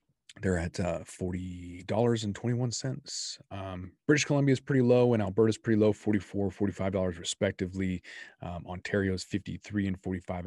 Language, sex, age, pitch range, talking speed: English, male, 30-49, 90-105 Hz, 140 wpm